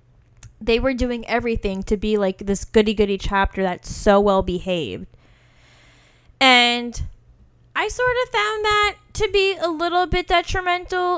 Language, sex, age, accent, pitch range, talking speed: English, female, 10-29, American, 195-305 Hz, 135 wpm